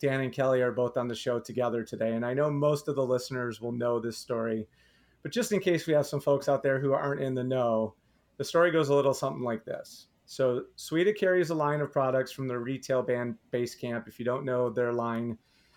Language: English